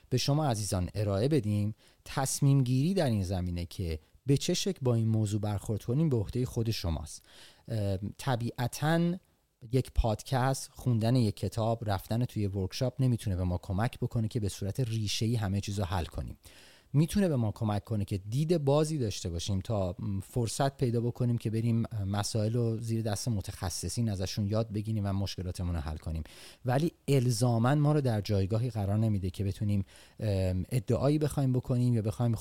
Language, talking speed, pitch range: Persian, 165 wpm, 95-125 Hz